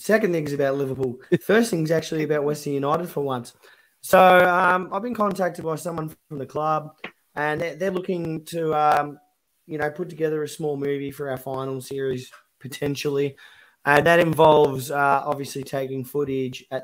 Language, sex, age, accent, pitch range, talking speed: English, male, 20-39, Australian, 135-155 Hz, 180 wpm